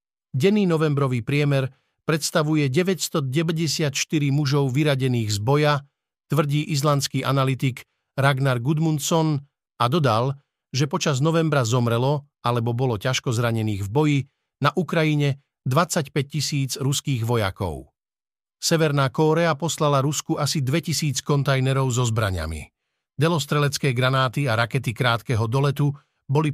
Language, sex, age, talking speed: Slovak, male, 50-69, 110 wpm